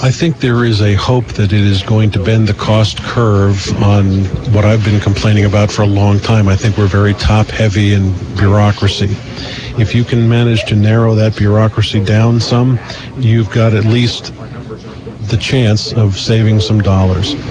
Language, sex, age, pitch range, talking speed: English, male, 50-69, 105-115 Hz, 180 wpm